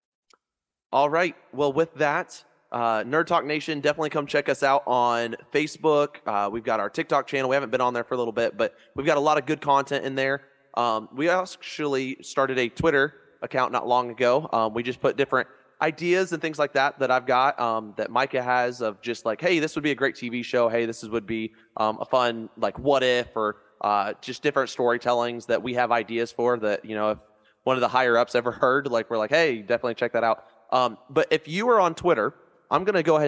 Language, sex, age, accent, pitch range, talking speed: English, male, 20-39, American, 115-145 Hz, 235 wpm